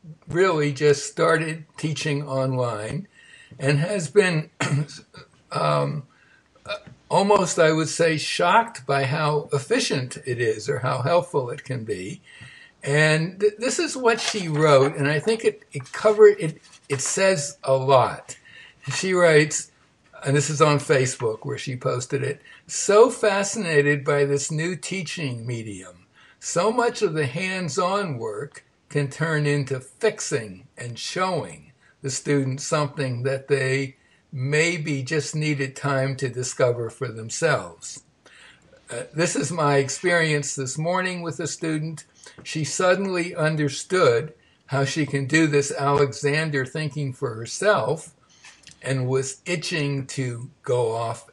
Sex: male